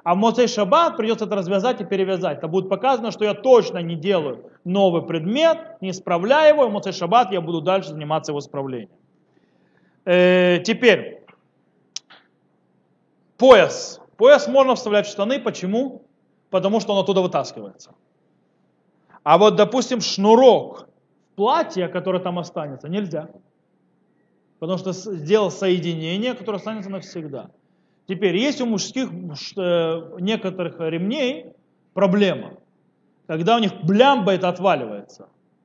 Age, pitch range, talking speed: 30-49, 175-225 Hz, 125 wpm